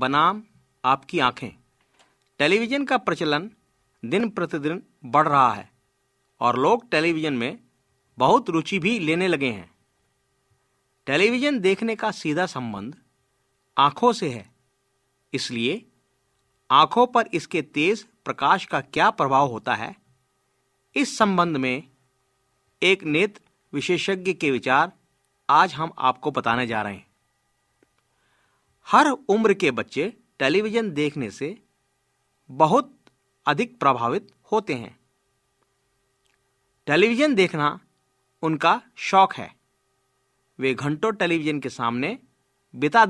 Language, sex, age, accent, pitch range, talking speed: Hindi, male, 50-69, native, 135-215 Hz, 110 wpm